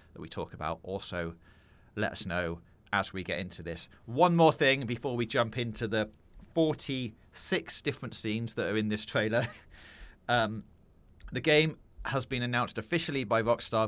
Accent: British